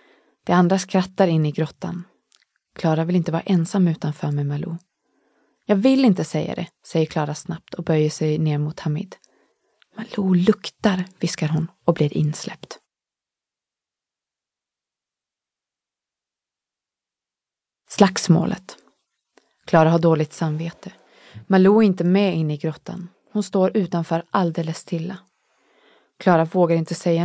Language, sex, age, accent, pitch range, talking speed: Swedish, female, 30-49, native, 160-195 Hz, 125 wpm